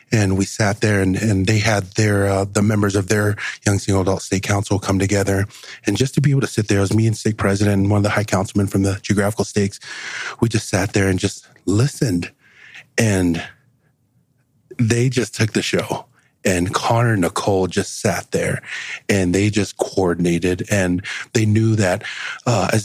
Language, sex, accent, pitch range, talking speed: English, male, American, 95-110 Hz, 195 wpm